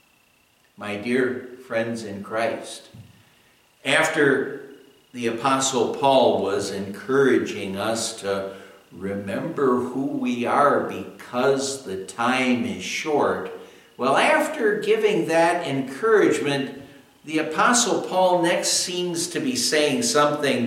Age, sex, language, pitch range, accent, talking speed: 60-79, male, English, 120-165 Hz, American, 105 wpm